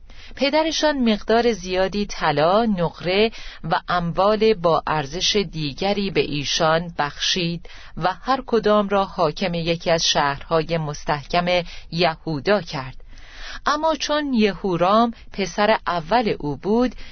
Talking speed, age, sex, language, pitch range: 110 wpm, 40-59, female, Persian, 160-225 Hz